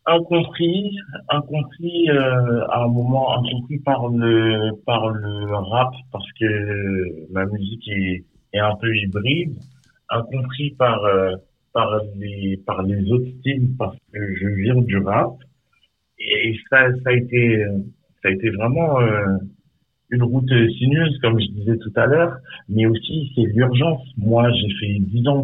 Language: French